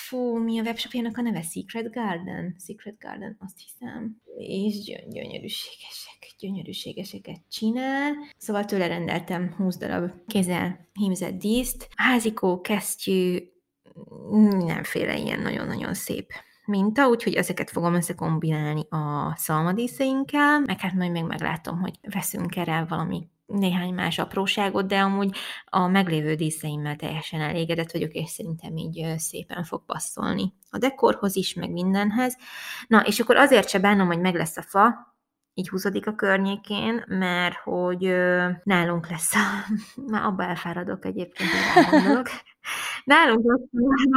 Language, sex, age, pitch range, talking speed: Hungarian, female, 20-39, 175-230 Hz, 130 wpm